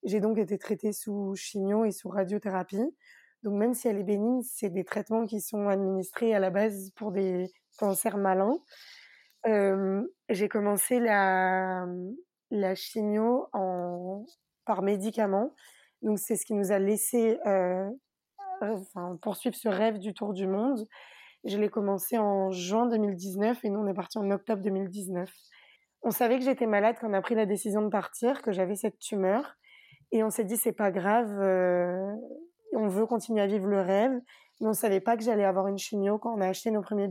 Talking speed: 185 wpm